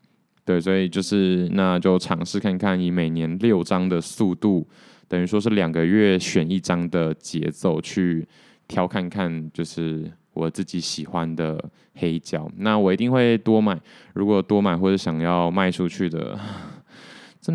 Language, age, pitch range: Chinese, 20-39, 85-100 Hz